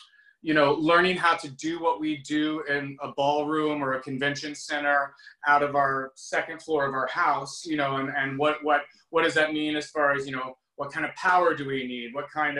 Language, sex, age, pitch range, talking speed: English, male, 30-49, 135-165 Hz, 230 wpm